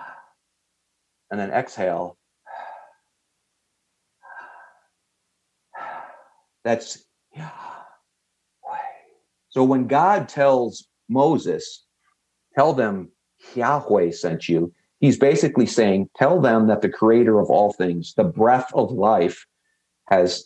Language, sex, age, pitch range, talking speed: English, male, 50-69, 125-185 Hz, 90 wpm